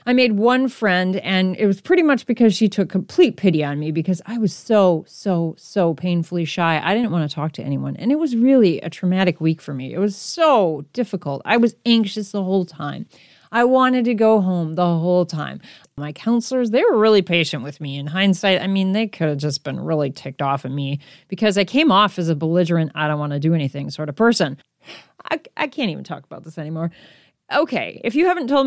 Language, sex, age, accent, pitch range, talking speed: English, female, 30-49, American, 160-230 Hz, 230 wpm